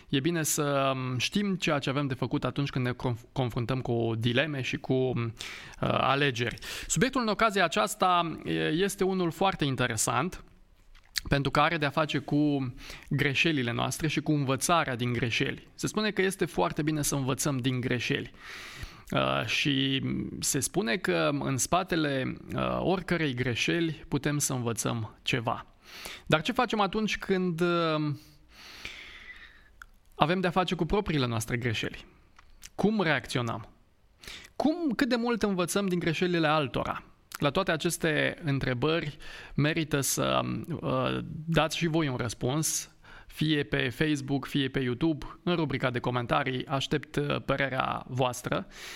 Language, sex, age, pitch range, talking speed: Romanian, male, 20-39, 130-170 Hz, 130 wpm